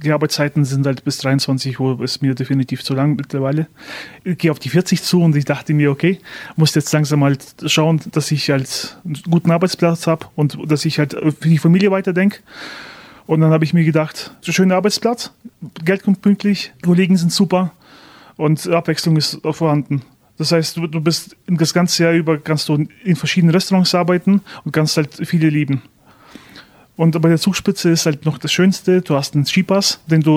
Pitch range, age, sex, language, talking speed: 150-180 Hz, 30-49, male, German, 195 wpm